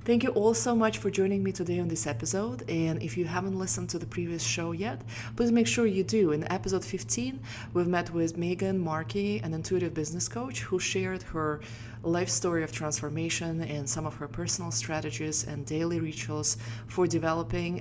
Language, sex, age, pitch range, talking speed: English, female, 20-39, 115-175 Hz, 190 wpm